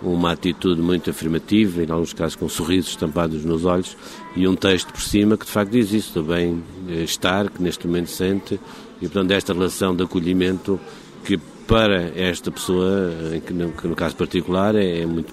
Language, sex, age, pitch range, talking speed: Portuguese, male, 50-69, 85-100 Hz, 175 wpm